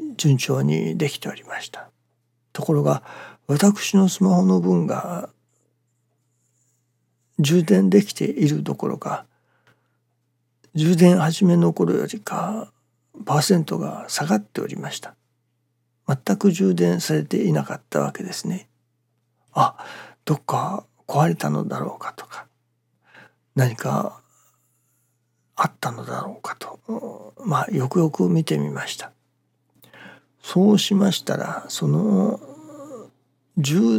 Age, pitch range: 60-79, 120-195 Hz